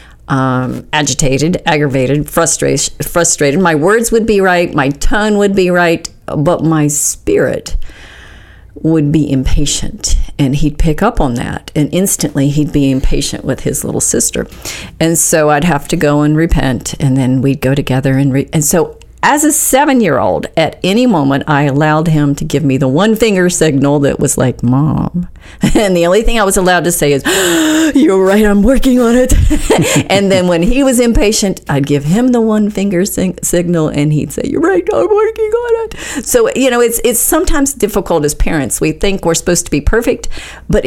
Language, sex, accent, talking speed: English, female, American, 190 wpm